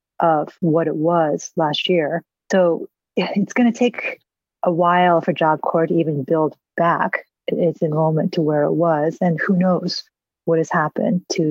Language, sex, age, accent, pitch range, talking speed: English, female, 40-59, American, 165-195 Hz, 165 wpm